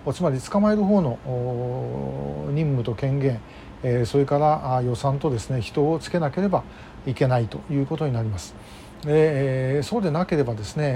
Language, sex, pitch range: Japanese, male, 125-165 Hz